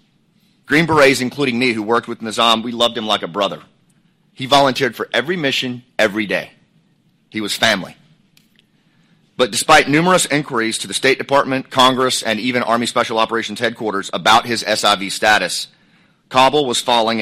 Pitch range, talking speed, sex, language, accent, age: 110-145 Hz, 160 wpm, male, English, American, 40-59